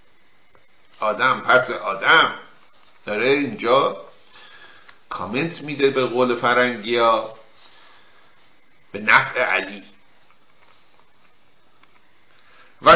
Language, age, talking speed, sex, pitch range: English, 50-69, 65 wpm, male, 140-195 Hz